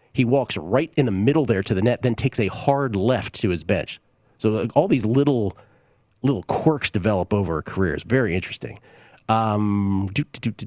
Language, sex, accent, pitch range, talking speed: English, male, American, 100-130 Hz, 210 wpm